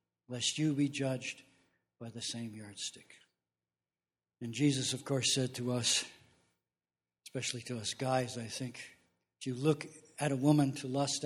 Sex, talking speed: male, 155 wpm